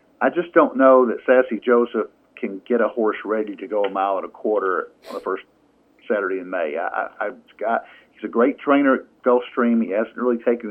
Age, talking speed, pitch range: 50-69, 215 wpm, 110-130 Hz